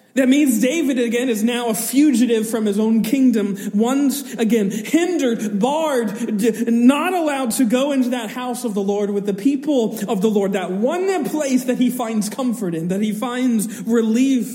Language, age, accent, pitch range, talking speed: English, 40-59, American, 210-260 Hz, 180 wpm